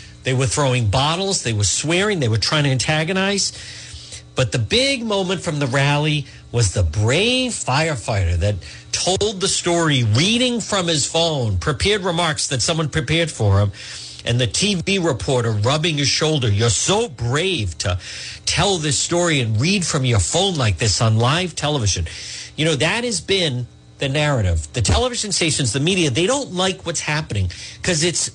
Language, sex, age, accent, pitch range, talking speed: English, male, 50-69, American, 115-180 Hz, 170 wpm